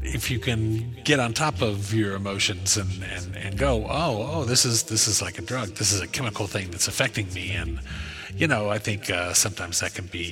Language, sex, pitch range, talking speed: English, male, 95-115 Hz, 235 wpm